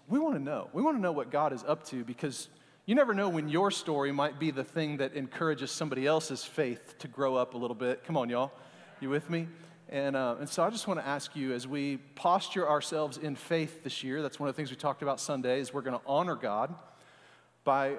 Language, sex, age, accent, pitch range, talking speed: English, male, 40-59, American, 140-185 Hz, 245 wpm